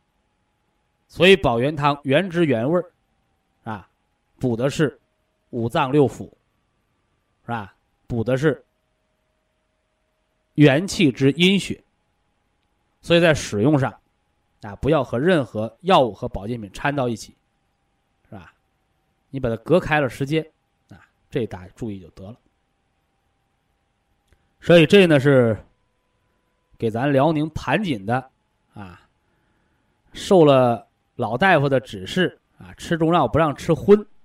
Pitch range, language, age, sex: 110-165 Hz, Chinese, 20-39, male